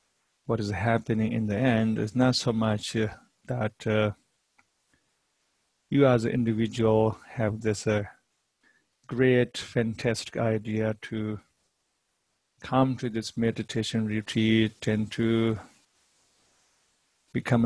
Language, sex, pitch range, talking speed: English, male, 110-120 Hz, 110 wpm